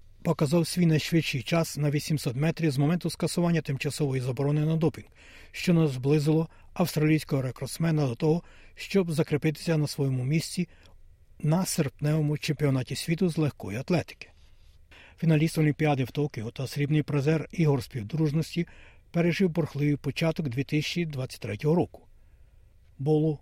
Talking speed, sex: 120 wpm, male